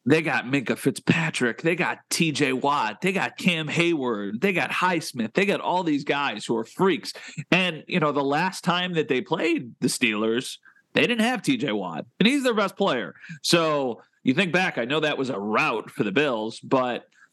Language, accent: English, American